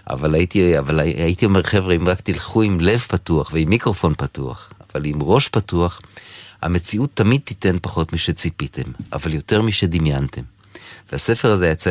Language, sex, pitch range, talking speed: Hebrew, male, 90-120 Hz, 150 wpm